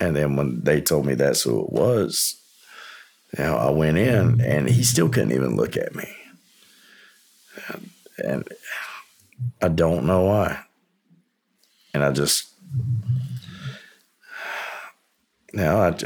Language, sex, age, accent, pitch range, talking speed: English, male, 50-69, American, 80-100 Hz, 130 wpm